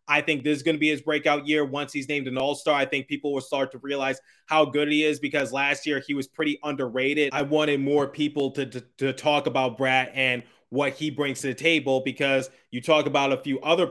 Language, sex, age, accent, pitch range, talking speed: English, male, 20-39, American, 140-160 Hz, 245 wpm